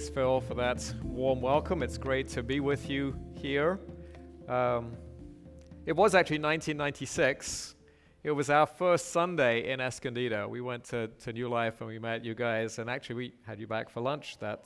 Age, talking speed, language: 40-59, 180 wpm, English